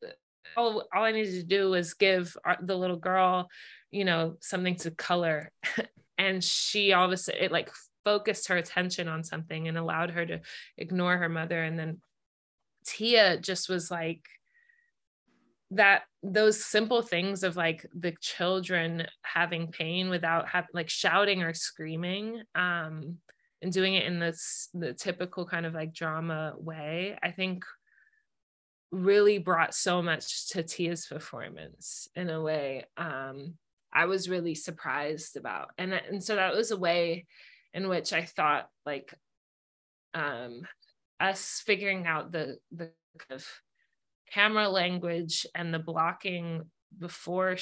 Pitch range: 165-190 Hz